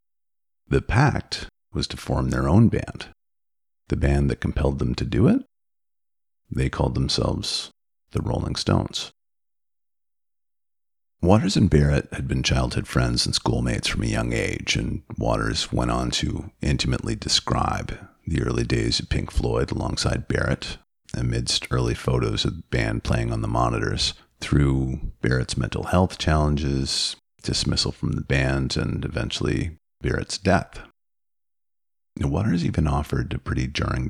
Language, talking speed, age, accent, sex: English, 140 wpm, 40-59, American, male